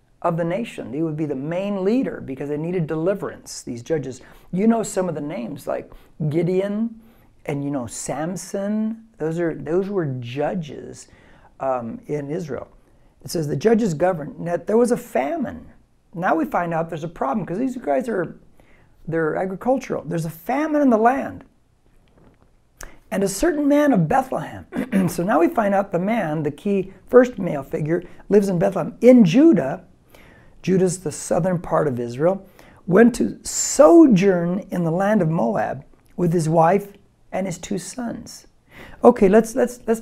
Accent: American